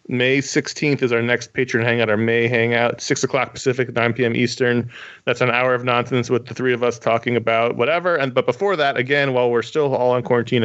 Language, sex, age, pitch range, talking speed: English, male, 30-49, 110-130 Hz, 225 wpm